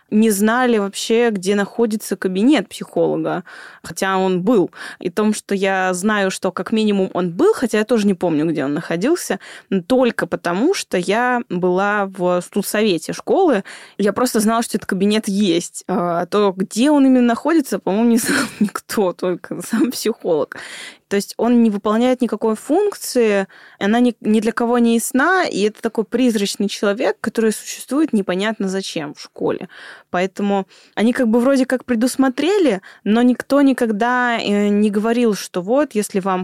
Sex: female